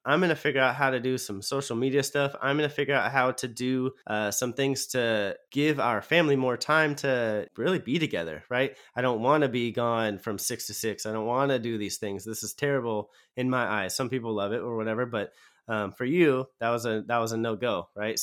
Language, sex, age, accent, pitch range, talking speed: English, male, 30-49, American, 110-130 Hz, 250 wpm